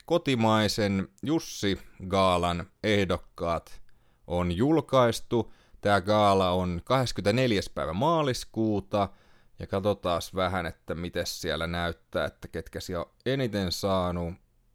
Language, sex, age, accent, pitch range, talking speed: Finnish, male, 30-49, native, 90-120 Hz, 100 wpm